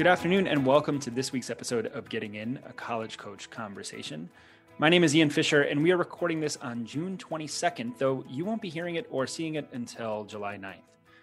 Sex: male